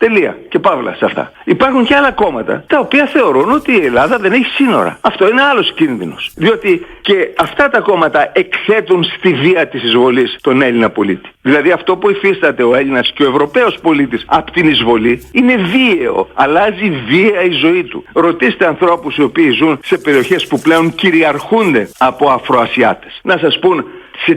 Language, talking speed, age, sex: Greek, 175 wpm, 60-79, male